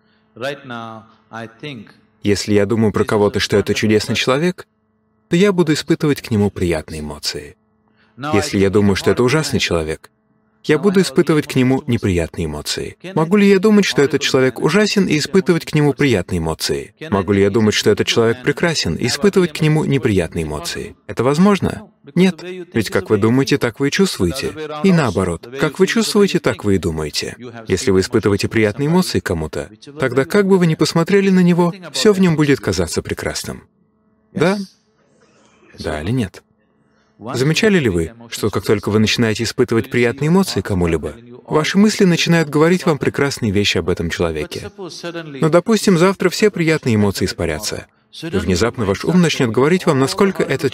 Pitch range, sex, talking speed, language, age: 105-170 Hz, male, 165 wpm, Russian, 30-49